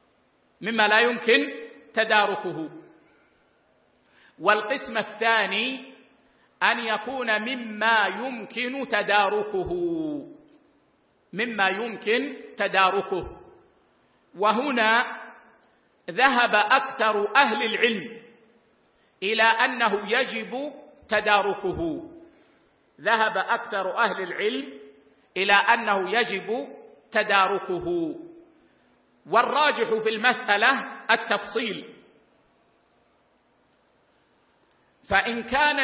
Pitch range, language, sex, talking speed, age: 205-250 Hz, Arabic, male, 60 wpm, 50-69